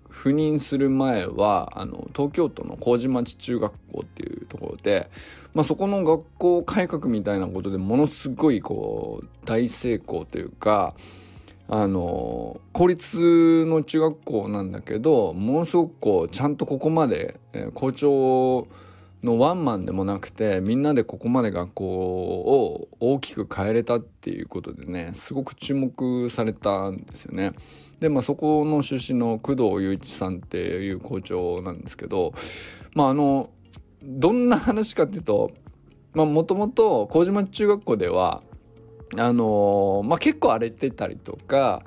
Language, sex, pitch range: Japanese, male, 105-160 Hz